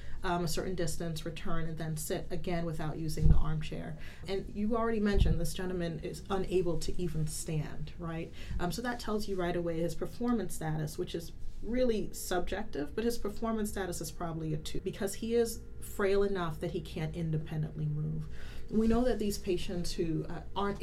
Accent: American